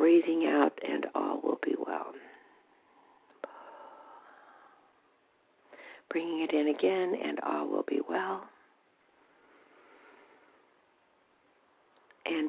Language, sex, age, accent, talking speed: English, female, 60-79, American, 80 wpm